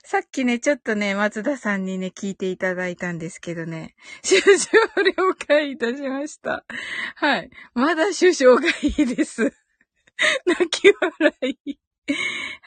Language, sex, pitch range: Japanese, female, 210-295 Hz